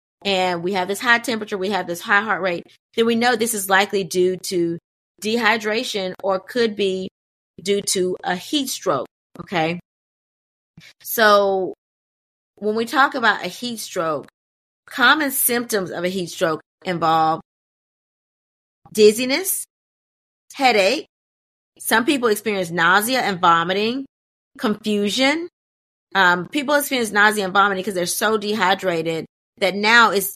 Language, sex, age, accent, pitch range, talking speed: English, female, 30-49, American, 185-225 Hz, 130 wpm